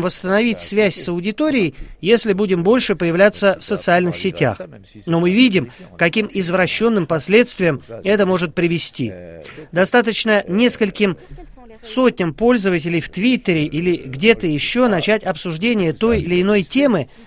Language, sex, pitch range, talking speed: Russian, male, 165-220 Hz, 120 wpm